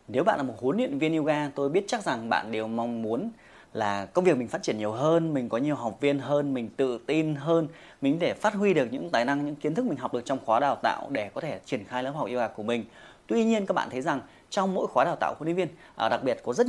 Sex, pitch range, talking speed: male, 125-180 Hz, 290 wpm